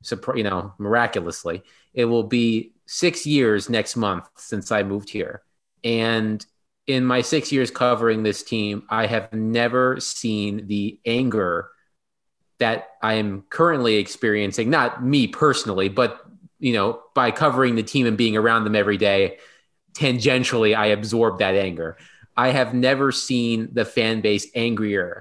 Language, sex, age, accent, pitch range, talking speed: English, male, 30-49, American, 105-125 Hz, 150 wpm